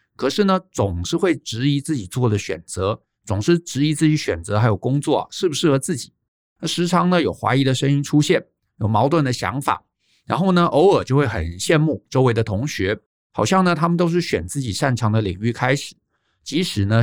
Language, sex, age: Chinese, male, 50-69